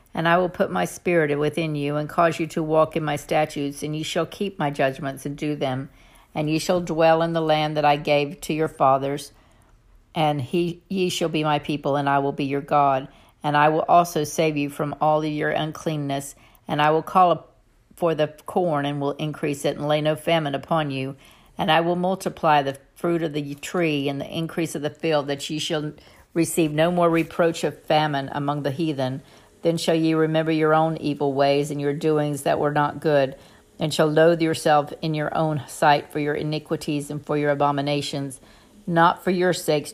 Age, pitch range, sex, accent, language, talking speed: 60-79, 145-160 Hz, female, American, English, 215 wpm